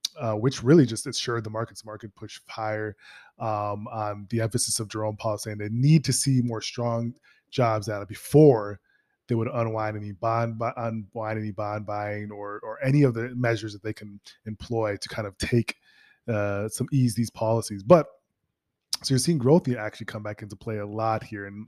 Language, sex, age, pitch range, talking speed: English, male, 20-39, 105-125 Hz, 195 wpm